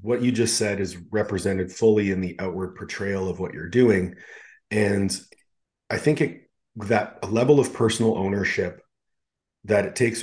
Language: English